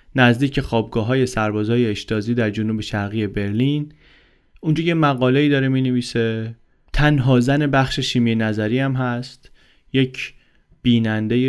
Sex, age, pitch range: male, 30-49, 110-135 Hz